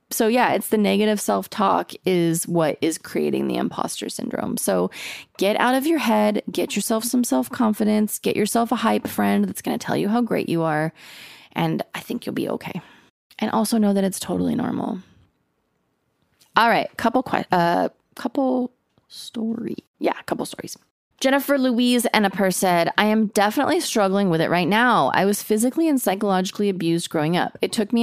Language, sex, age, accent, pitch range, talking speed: English, female, 20-39, American, 175-235 Hz, 185 wpm